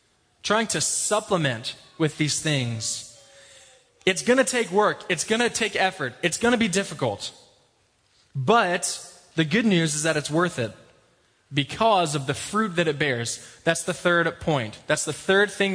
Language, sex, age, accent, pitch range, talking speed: English, male, 20-39, American, 130-180 Hz, 170 wpm